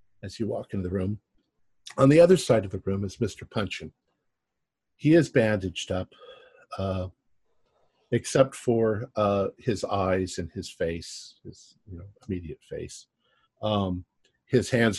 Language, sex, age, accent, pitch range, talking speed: English, male, 50-69, American, 95-115 Hz, 150 wpm